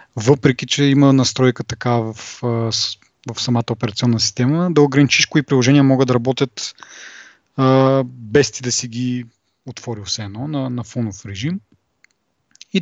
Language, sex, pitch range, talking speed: Bulgarian, male, 120-150 Hz, 140 wpm